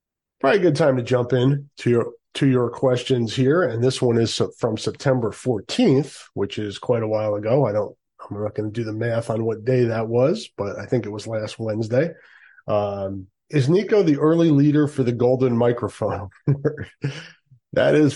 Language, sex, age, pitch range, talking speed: English, male, 30-49, 105-130 Hz, 195 wpm